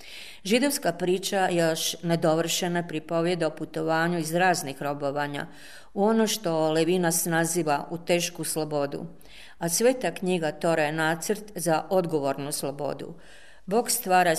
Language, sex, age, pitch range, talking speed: Croatian, female, 40-59, 155-180 Hz, 120 wpm